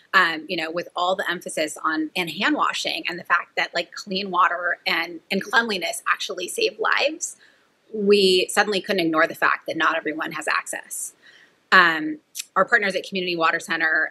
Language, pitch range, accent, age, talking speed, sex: English, 180-240 Hz, American, 20-39, 175 wpm, female